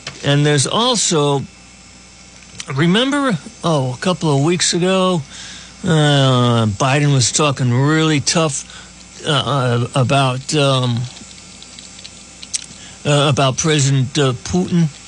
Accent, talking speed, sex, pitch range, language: American, 90 wpm, male, 125-165 Hz, English